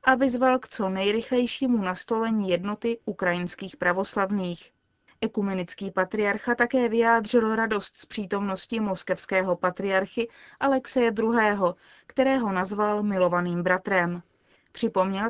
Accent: native